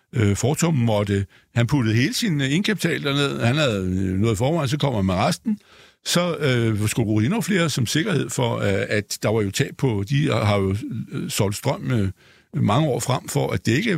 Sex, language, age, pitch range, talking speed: male, Danish, 60-79, 110-170 Hz, 180 wpm